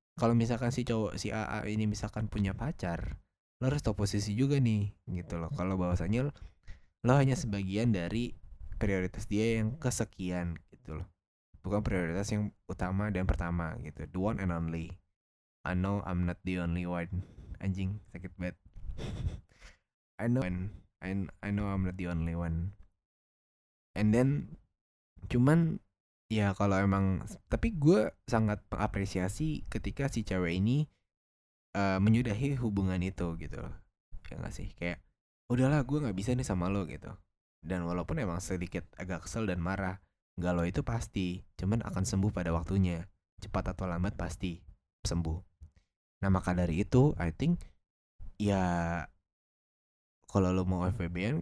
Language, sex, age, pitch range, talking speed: English, male, 20-39, 85-105 Hz, 150 wpm